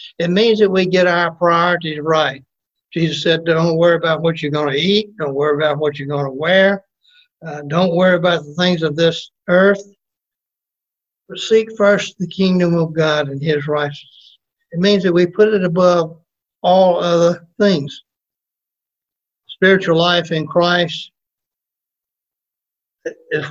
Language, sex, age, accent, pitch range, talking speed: English, male, 60-79, American, 155-185 Hz, 155 wpm